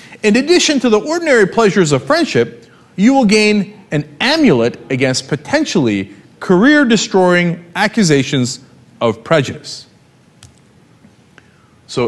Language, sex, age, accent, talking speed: English, male, 40-59, American, 105 wpm